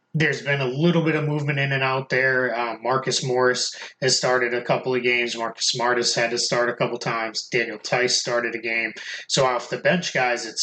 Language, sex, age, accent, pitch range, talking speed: English, male, 20-39, American, 115-135 Hz, 225 wpm